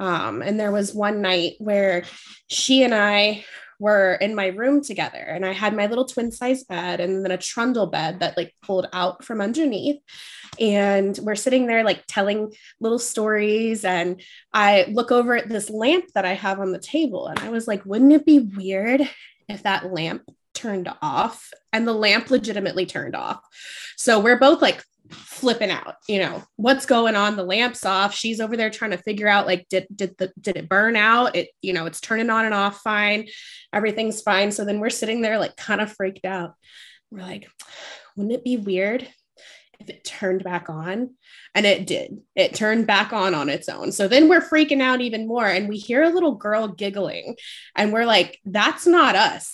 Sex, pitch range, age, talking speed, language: female, 195-240 Hz, 20-39, 200 wpm, English